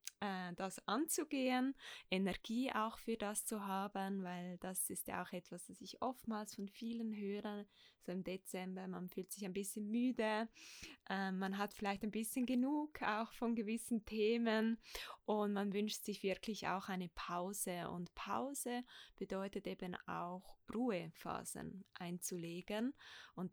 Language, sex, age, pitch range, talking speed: German, female, 20-39, 185-220 Hz, 140 wpm